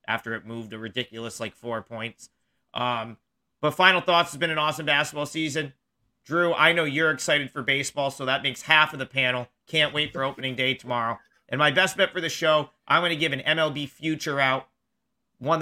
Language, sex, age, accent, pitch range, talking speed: English, male, 40-59, American, 130-160 Hz, 210 wpm